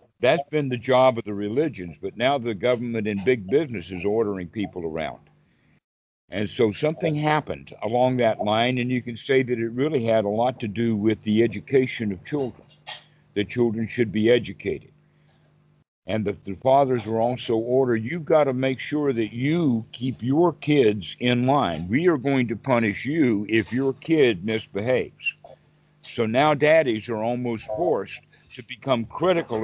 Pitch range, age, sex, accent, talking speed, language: 110-145 Hz, 50-69, male, American, 170 wpm, English